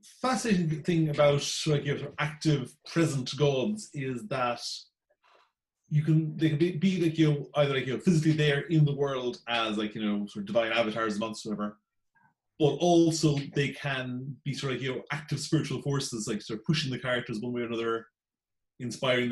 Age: 30-49